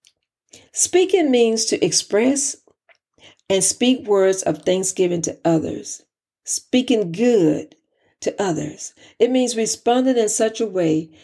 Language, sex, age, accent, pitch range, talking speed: English, female, 50-69, American, 175-250 Hz, 115 wpm